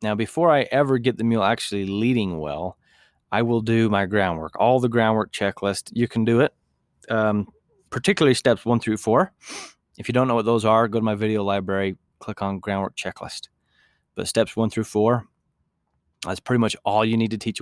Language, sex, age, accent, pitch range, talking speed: English, male, 20-39, American, 100-120 Hz, 190 wpm